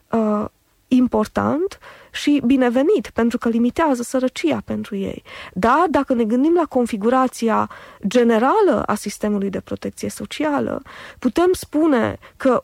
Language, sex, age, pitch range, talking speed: Romanian, female, 20-39, 230-300 Hz, 115 wpm